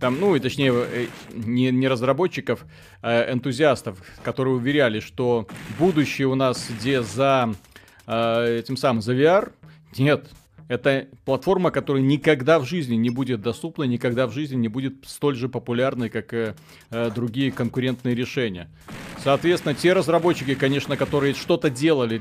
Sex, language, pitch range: male, Russian, 120-150 Hz